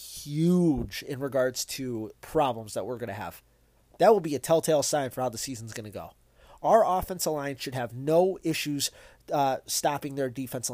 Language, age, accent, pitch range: English, 30-49, American, 125-150 Hz